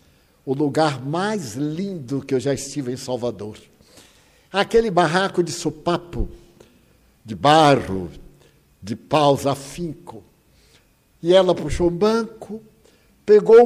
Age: 60-79